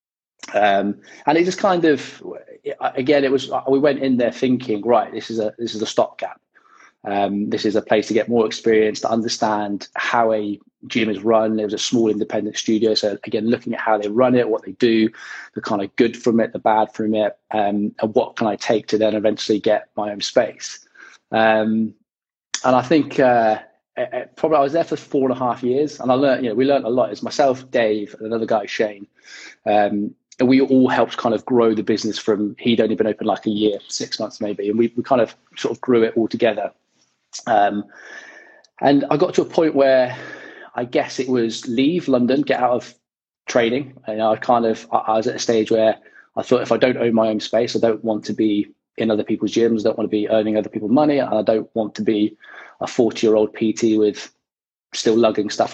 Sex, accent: male, British